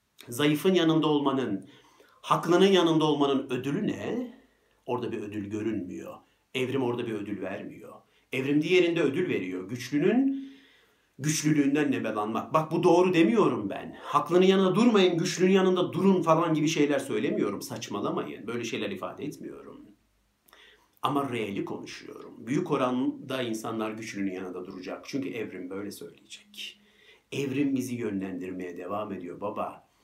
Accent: native